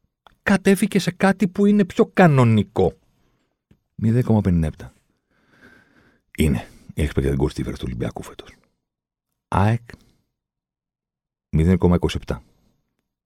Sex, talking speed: male, 85 wpm